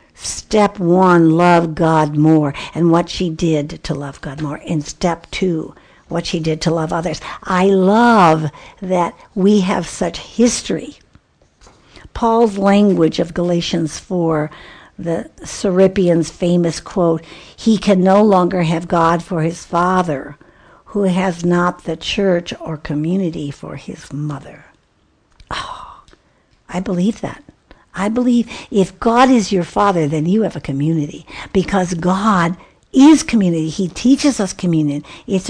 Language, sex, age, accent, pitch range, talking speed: English, female, 60-79, American, 170-235 Hz, 140 wpm